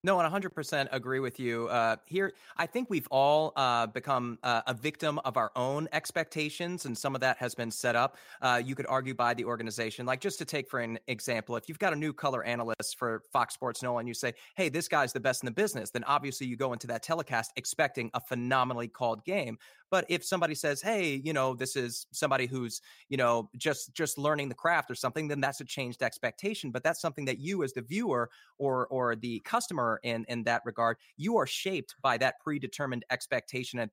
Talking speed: 220 wpm